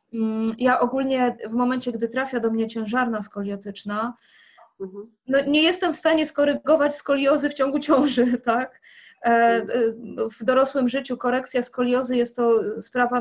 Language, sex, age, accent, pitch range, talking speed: English, female, 20-39, Polish, 215-245 Hz, 130 wpm